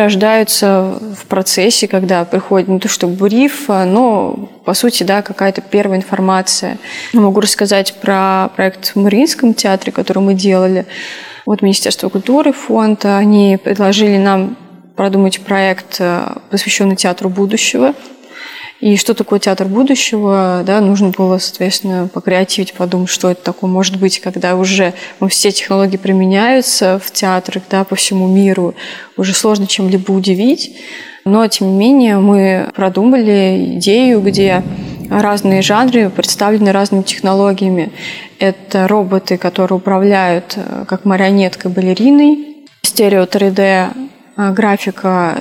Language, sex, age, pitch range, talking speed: Russian, female, 20-39, 190-215 Hz, 125 wpm